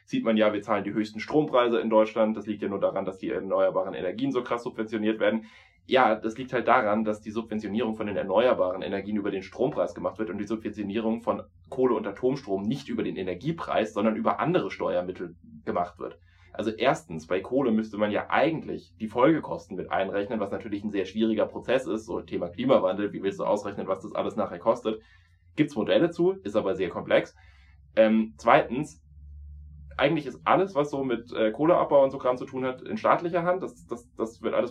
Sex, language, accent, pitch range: male, German, German, 95-130 Hz